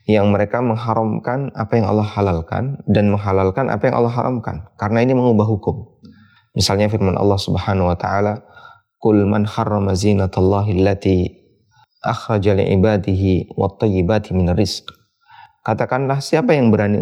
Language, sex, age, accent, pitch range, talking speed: Indonesian, male, 20-39, native, 95-115 Hz, 100 wpm